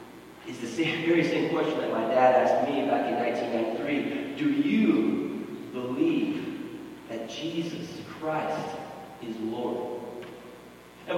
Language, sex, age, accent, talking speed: English, male, 30-49, American, 125 wpm